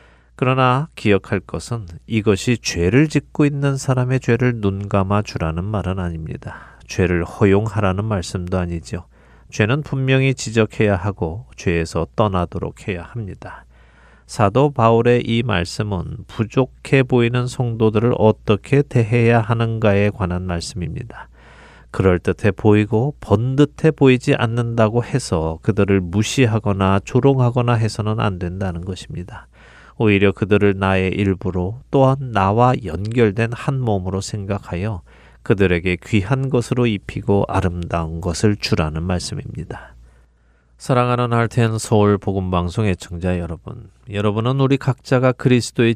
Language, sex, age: Korean, male, 40-59